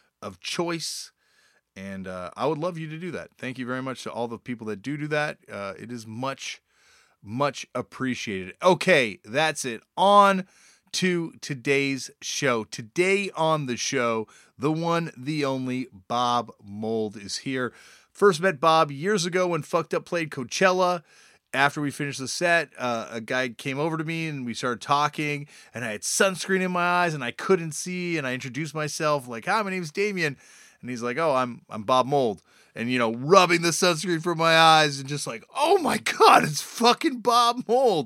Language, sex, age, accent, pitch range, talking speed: English, male, 30-49, American, 120-180 Hz, 190 wpm